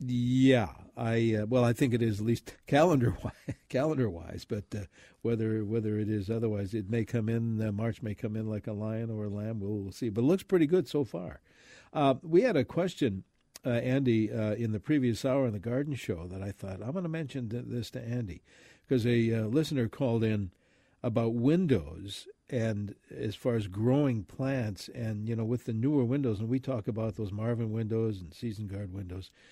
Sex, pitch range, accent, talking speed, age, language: male, 105-130 Hz, American, 205 wpm, 60-79, English